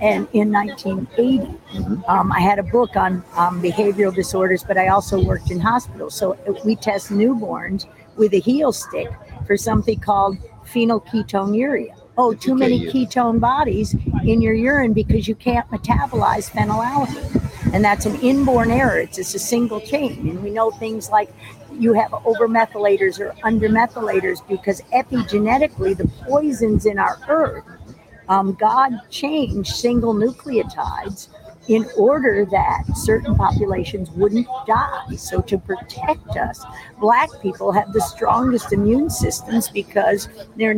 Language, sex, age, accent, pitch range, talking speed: English, female, 50-69, American, 205-250 Hz, 140 wpm